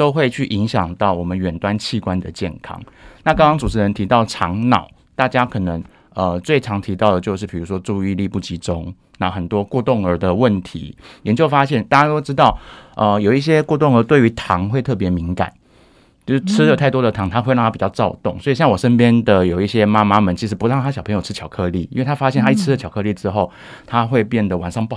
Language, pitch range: Chinese, 95-130 Hz